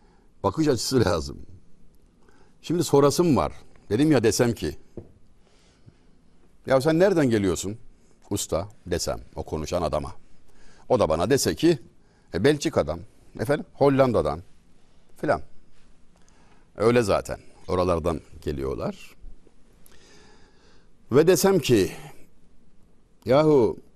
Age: 60-79